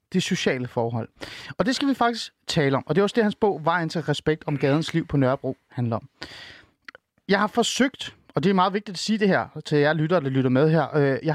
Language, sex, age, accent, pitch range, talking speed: Danish, male, 30-49, native, 140-185 Hz, 250 wpm